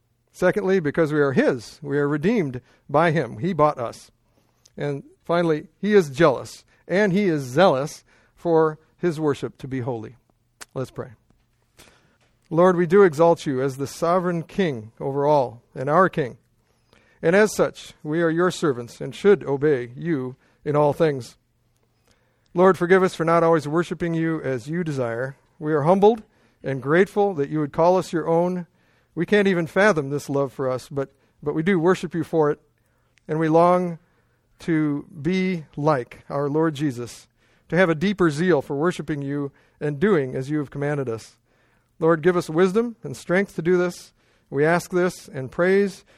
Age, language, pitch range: 50-69, English, 135-175 Hz